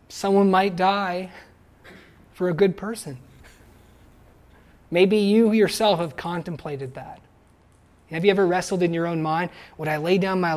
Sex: male